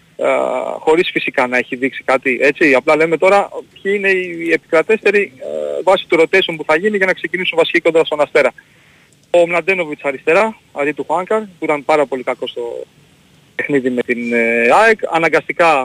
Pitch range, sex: 135-180 Hz, male